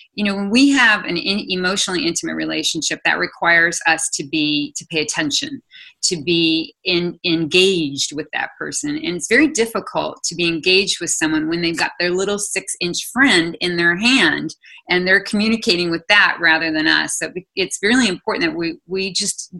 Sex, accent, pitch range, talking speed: female, American, 165-225 Hz, 185 wpm